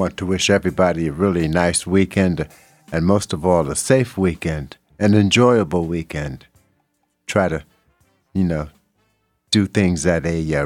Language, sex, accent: English, male, American